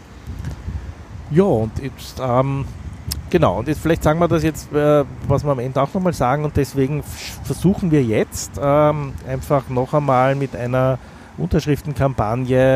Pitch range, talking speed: 110-135 Hz, 150 wpm